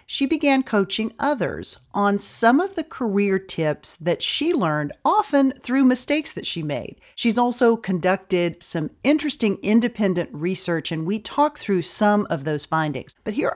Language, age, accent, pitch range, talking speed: English, 40-59, American, 175-255 Hz, 160 wpm